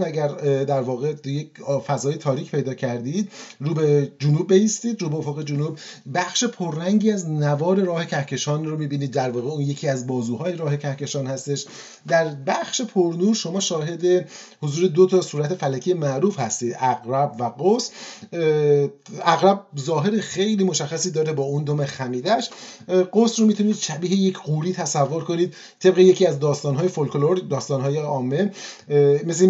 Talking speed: 150 wpm